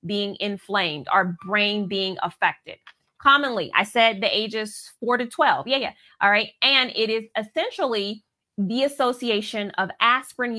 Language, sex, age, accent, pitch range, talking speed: English, female, 30-49, American, 195-255 Hz, 145 wpm